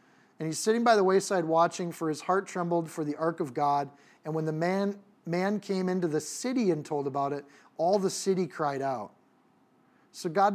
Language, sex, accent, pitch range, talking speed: English, male, American, 150-190 Hz, 205 wpm